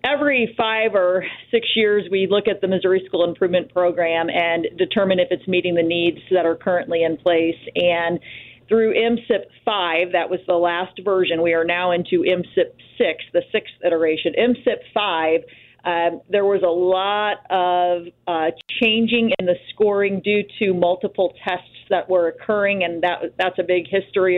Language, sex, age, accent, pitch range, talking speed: English, female, 40-59, American, 175-205 Hz, 170 wpm